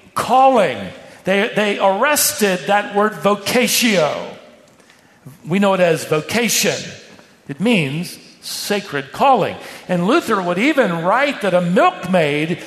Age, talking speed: 50-69, 115 wpm